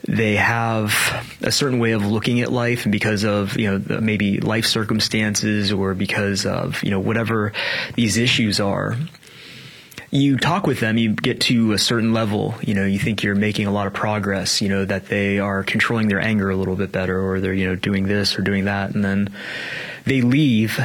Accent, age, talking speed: American, 20-39, 205 wpm